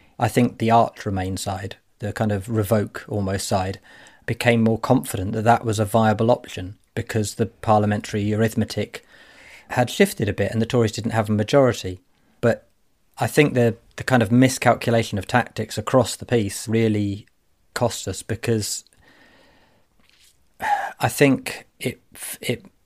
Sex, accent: male, British